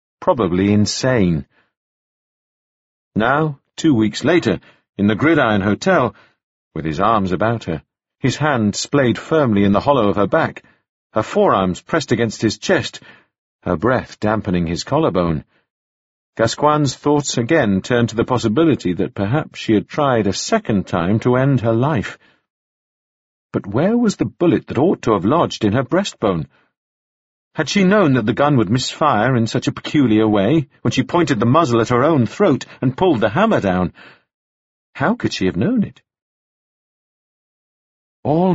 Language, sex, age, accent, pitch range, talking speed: English, male, 50-69, British, 100-140 Hz, 160 wpm